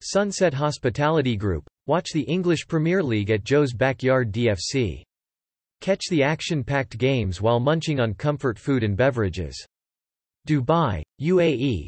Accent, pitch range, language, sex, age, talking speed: American, 115-150 Hz, English, male, 40-59, 125 wpm